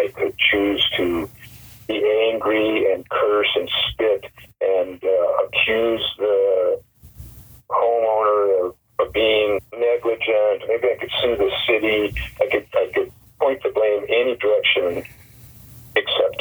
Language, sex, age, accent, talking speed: English, male, 50-69, American, 130 wpm